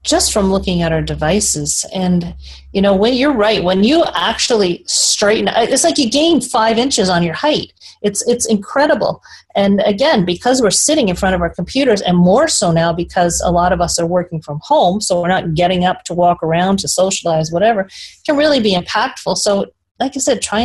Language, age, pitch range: English, 40-59, 180-235 Hz